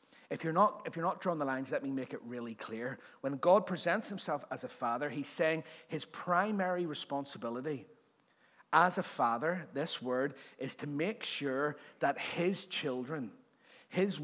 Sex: male